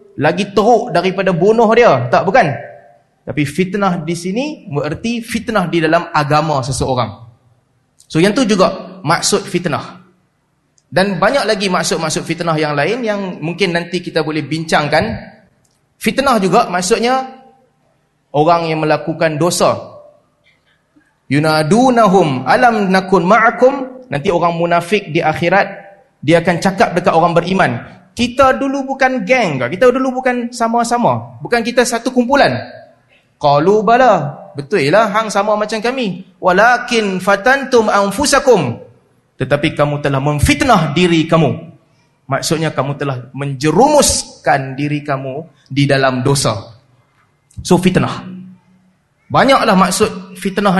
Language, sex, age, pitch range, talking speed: Malay, male, 30-49, 155-220 Hz, 120 wpm